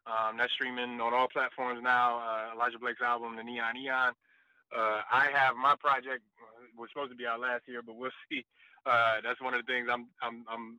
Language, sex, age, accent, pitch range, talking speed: English, male, 20-39, American, 120-145 Hz, 220 wpm